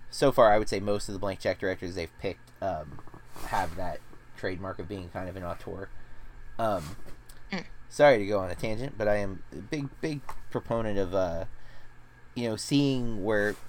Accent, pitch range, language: American, 100-125 Hz, English